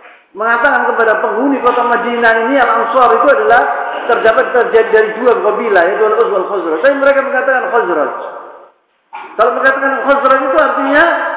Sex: male